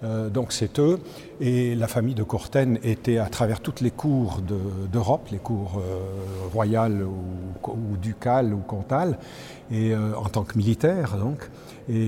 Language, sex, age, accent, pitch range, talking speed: French, male, 50-69, French, 105-125 Hz, 170 wpm